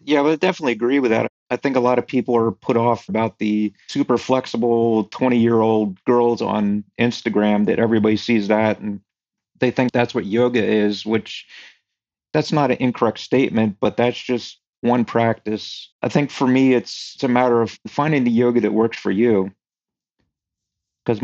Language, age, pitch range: English, 40-59, 110-125 Hz